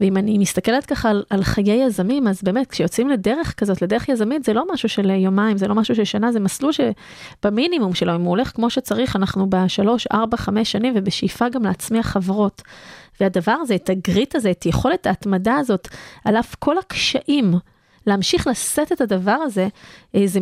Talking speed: 180 wpm